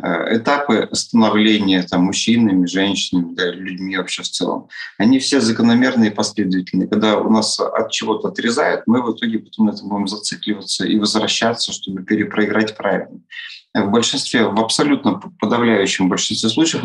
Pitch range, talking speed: 100-115 Hz, 145 wpm